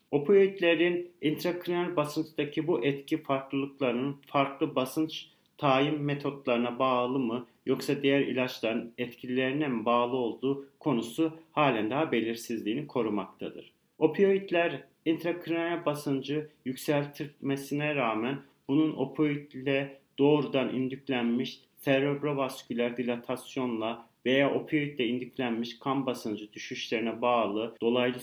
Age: 40-59